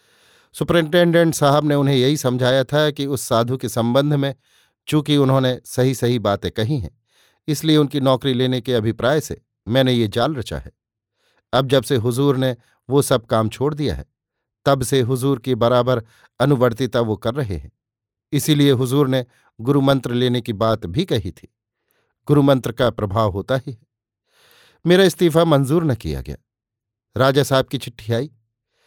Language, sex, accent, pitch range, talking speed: Hindi, male, native, 115-145 Hz, 165 wpm